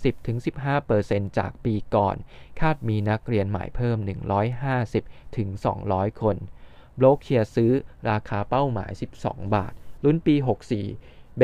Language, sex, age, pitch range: Thai, male, 20-39, 100-125 Hz